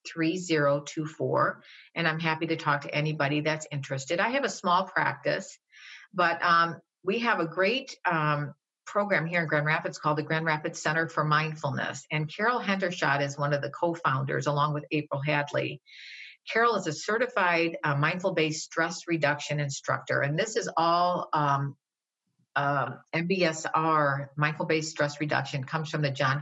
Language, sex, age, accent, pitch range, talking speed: English, female, 50-69, American, 140-165 Hz, 165 wpm